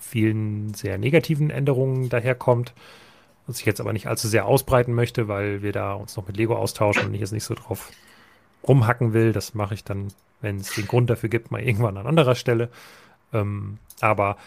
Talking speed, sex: 195 wpm, male